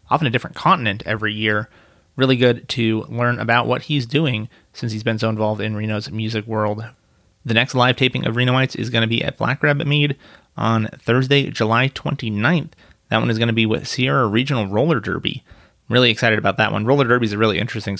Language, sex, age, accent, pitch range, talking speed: English, male, 30-49, American, 110-125 Hz, 220 wpm